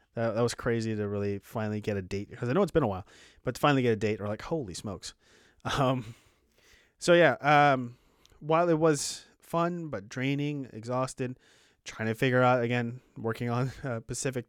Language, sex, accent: English, male, American